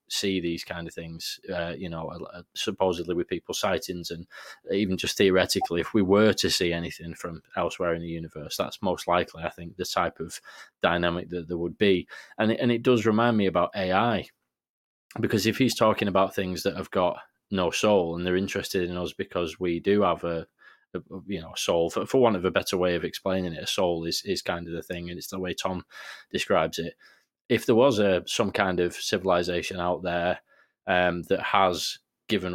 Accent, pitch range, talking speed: British, 85-100 Hz, 205 wpm